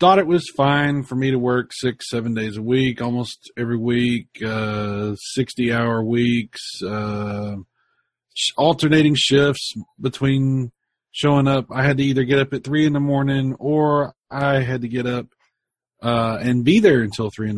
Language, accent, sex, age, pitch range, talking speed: English, American, male, 40-59, 115-145 Hz, 170 wpm